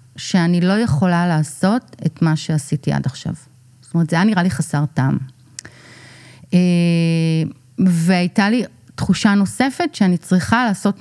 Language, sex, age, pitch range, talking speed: Hebrew, female, 30-49, 150-190 Hz, 130 wpm